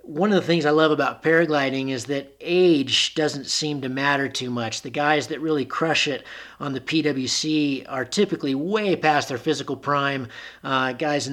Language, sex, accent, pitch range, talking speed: English, male, American, 130-145 Hz, 190 wpm